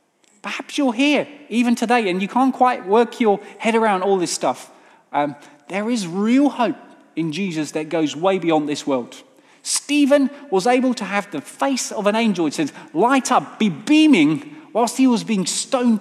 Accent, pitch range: British, 180-265 Hz